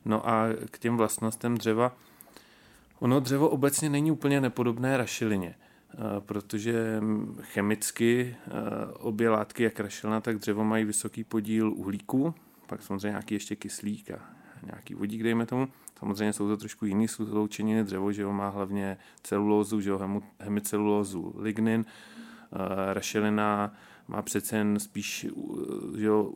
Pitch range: 105-115 Hz